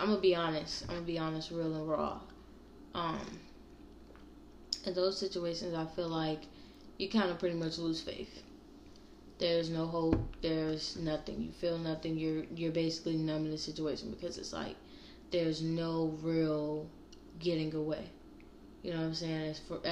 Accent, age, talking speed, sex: American, 10-29, 170 wpm, female